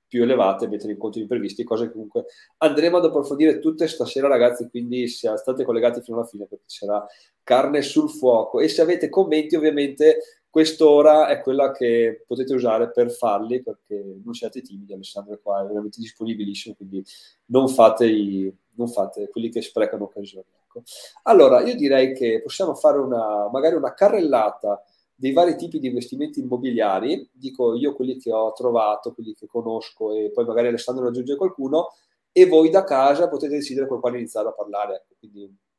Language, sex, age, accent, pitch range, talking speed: Italian, male, 30-49, native, 115-160 Hz, 175 wpm